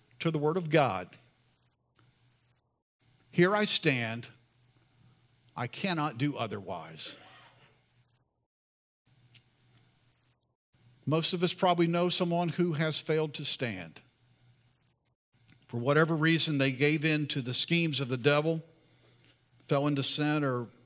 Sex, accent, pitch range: male, American, 120-150 Hz